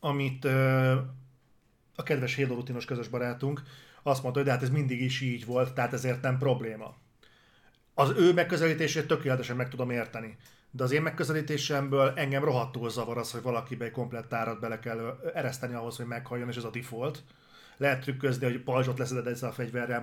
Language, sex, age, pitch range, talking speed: Hungarian, male, 30-49, 120-140 Hz, 170 wpm